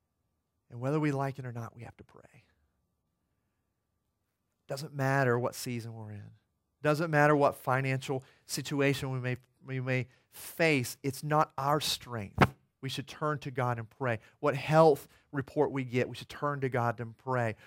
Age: 40-59